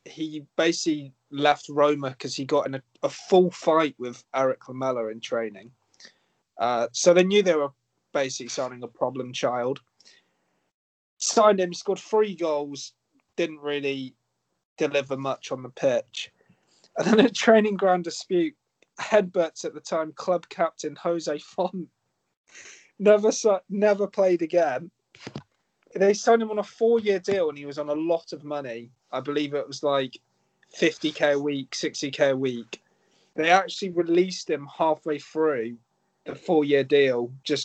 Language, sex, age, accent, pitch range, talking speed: English, male, 30-49, British, 135-180 Hz, 150 wpm